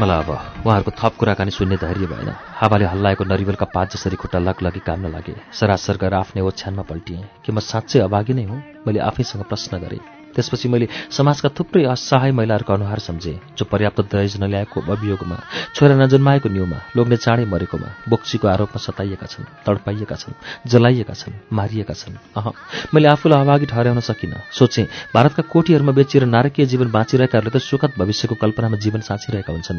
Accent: Indian